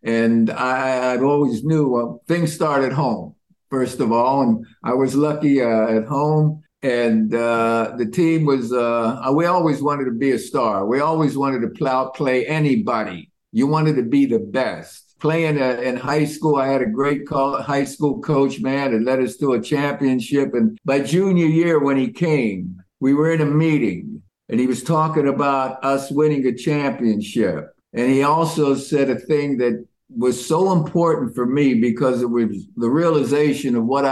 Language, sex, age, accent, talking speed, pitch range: English, male, 50-69, American, 180 wpm, 120-150 Hz